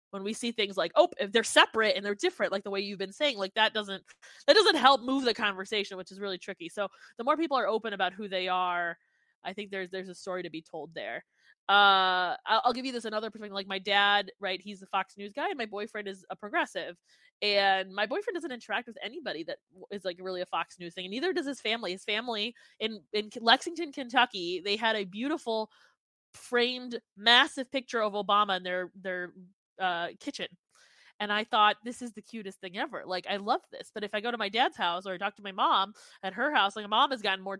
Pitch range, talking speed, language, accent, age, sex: 195-235 Hz, 240 wpm, English, American, 20-39, female